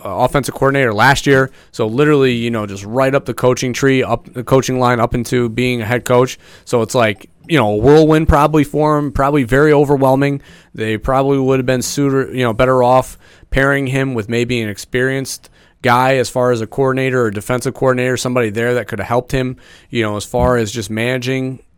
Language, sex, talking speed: English, male, 210 wpm